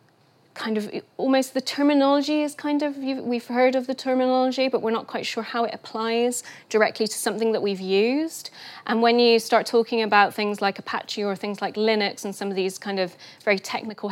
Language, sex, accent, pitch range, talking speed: English, female, British, 190-230 Hz, 205 wpm